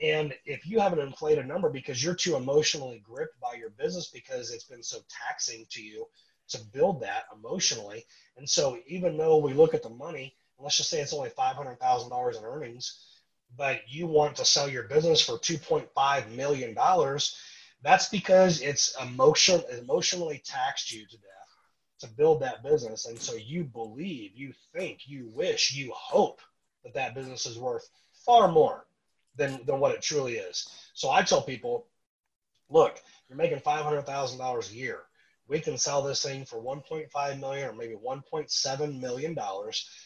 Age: 30-49